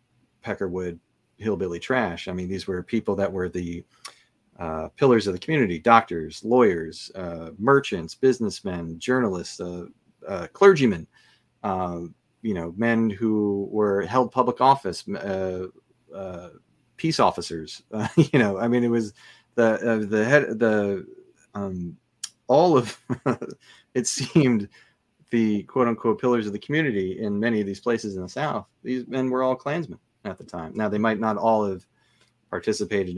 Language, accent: English, American